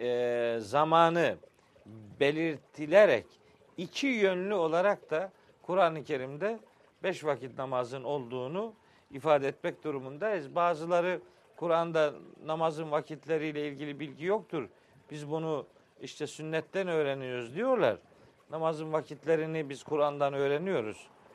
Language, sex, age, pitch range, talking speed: Turkish, male, 50-69, 135-180 Hz, 95 wpm